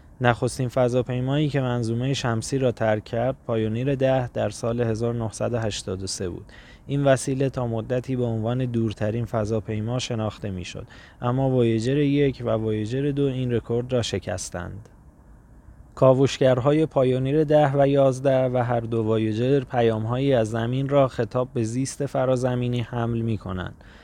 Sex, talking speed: male, 135 wpm